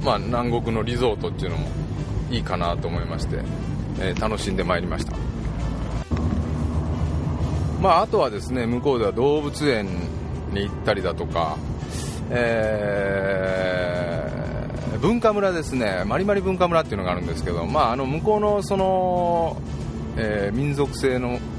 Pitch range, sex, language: 85-130 Hz, male, Japanese